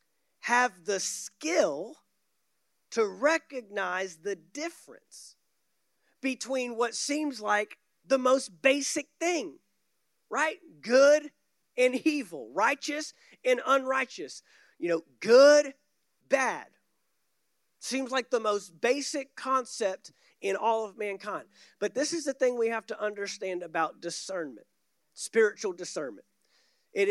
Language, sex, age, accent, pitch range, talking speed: English, male, 40-59, American, 195-290 Hz, 110 wpm